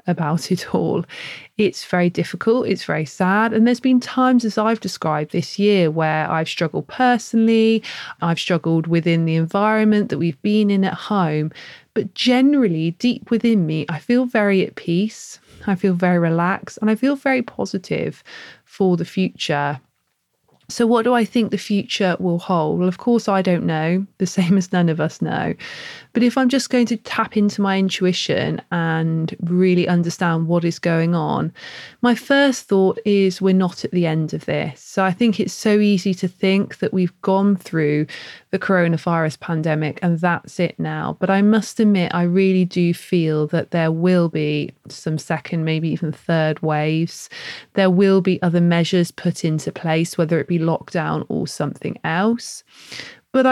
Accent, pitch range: British, 165-215 Hz